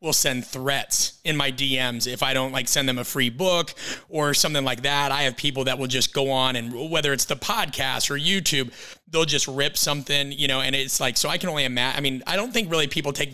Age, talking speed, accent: 30-49, 250 wpm, American